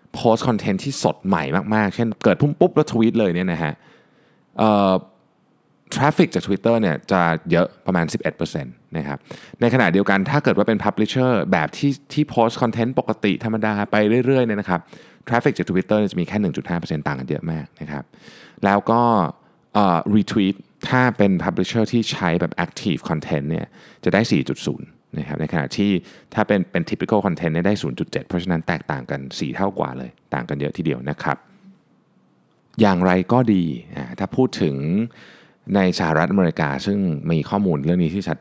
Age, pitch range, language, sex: 20-39, 80-115 Hz, Thai, male